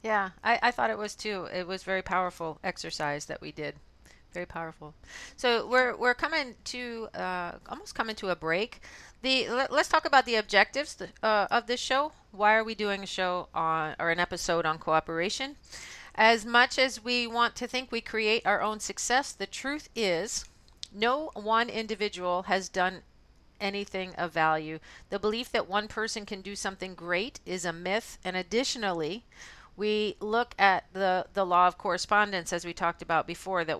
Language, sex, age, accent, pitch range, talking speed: English, female, 40-59, American, 175-225 Hz, 180 wpm